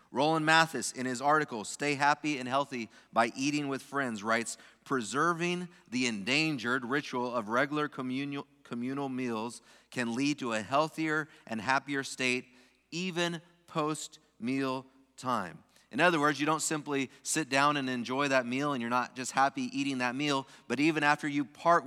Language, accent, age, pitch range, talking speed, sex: English, American, 30-49, 130-155 Hz, 160 wpm, male